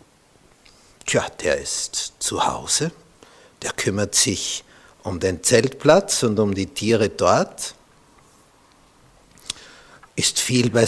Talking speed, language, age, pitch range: 105 wpm, German, 60-79, 95-130 Hz